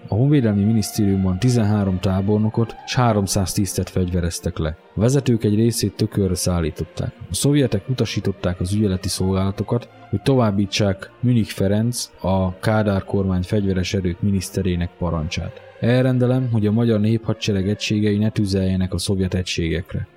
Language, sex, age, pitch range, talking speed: Hungarian, male, 20-39, 95-115 Hz, 130 wpm